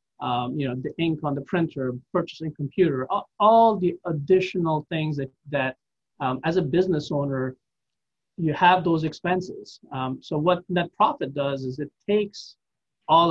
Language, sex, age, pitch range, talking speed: English, male, 30-49, 140-180 Hz, 160 wpm